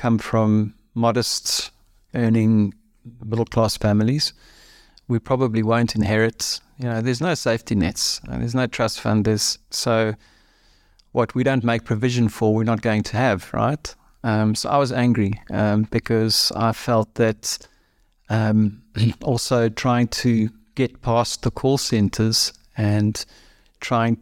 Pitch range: 110-125 Hz